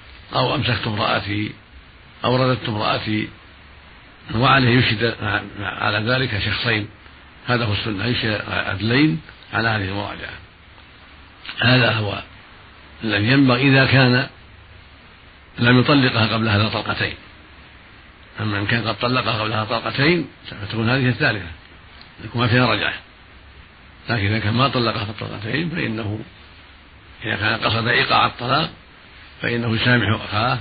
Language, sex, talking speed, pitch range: Arabic, male, 110 wpm, 100-120 Hz